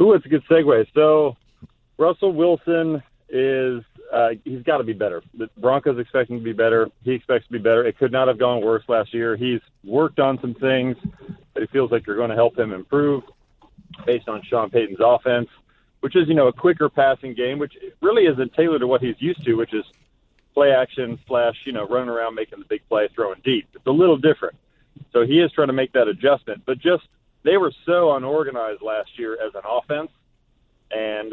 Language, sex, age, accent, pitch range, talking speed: English, male, 40-59, American, 120-165 Hz, 210 wpm